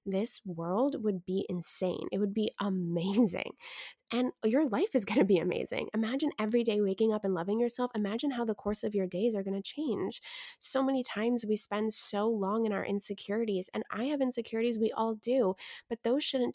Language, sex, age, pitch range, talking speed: English, female, 20-39, 190-230 Hz, 205 wpm